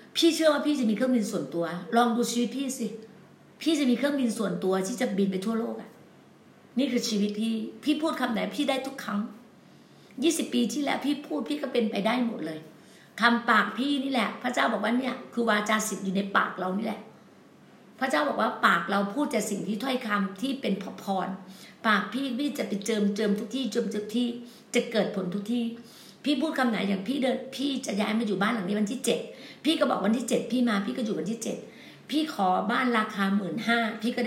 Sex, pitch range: female, 210-255 Hz